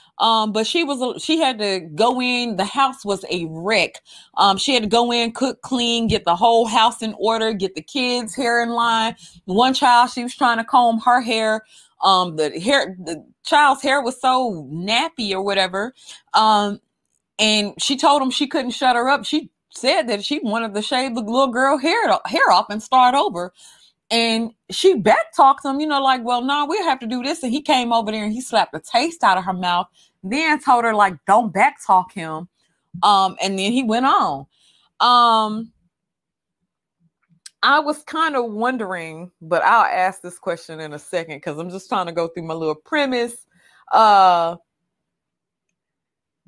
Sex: female